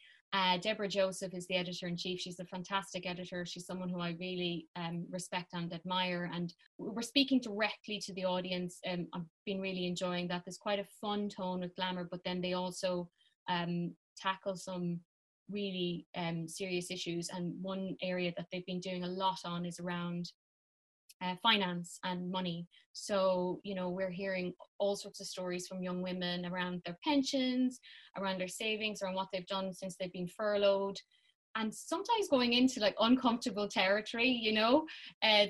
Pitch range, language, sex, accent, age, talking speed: 175-195 Hz, English, female, Irish, 20-39, 170 wpm